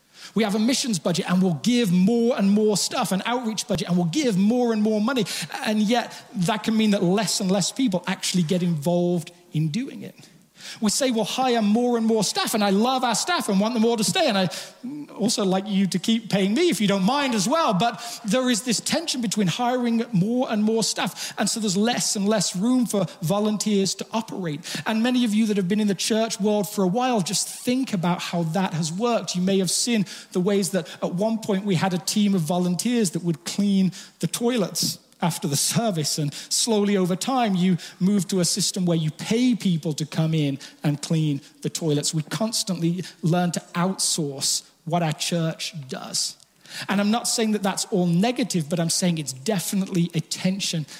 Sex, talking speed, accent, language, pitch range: male, 215 wpm, British, English, 175-225 Hz